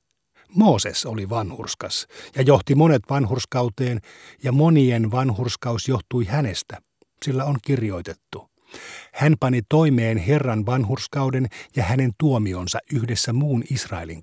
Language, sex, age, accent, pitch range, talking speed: Finnish, male, 50-69, native, 110-140 Hz, 110 wpm